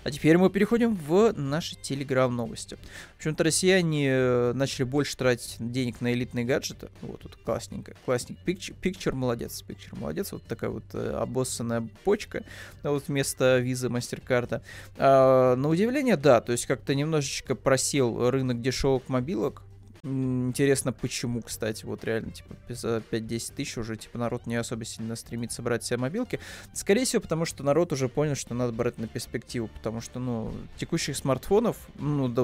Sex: male